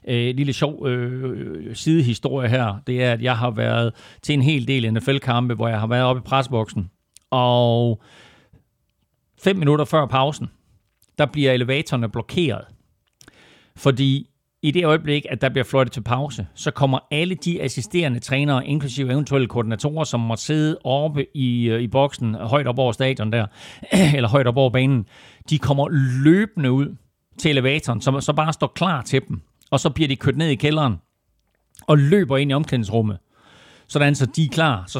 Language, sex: Danish, male